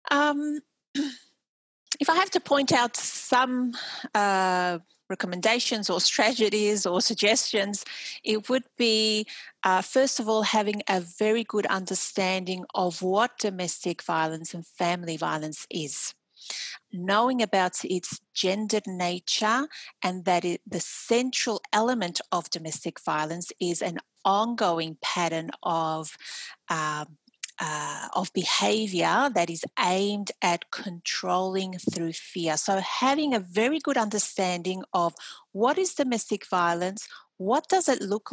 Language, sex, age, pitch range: English, female, 40-59, 180-235 Hz